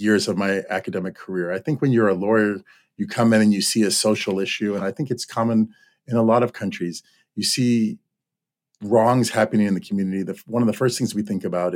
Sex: male